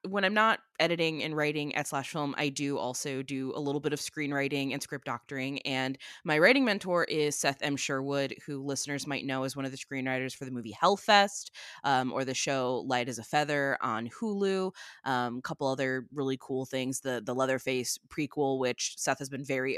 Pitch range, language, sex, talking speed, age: 130-165 Hz, English, female, 205 wpm, 20-39